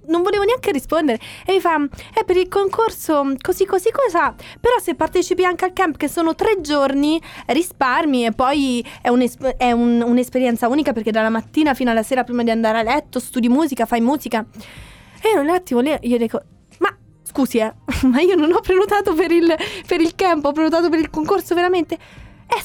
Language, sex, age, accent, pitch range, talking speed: Italian, female, 20-39, native, 230-325 Hz, 200 wpm